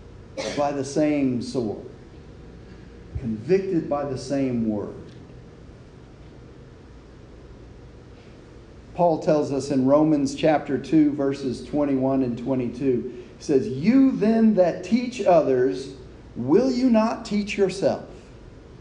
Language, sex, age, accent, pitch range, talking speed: English, male, 40-59, American, 130-215 Hz, 100 wpm